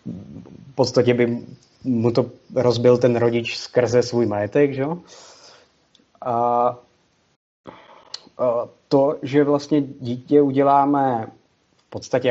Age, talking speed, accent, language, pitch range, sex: 20-39, 100 wpm, native, Czech, 120-145 Hz, male